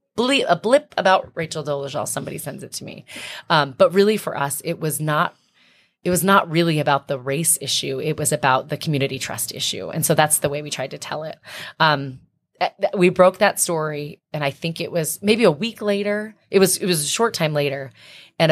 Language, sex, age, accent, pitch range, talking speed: English, female, 30-49, American, 150-195 Hz, 215 wpm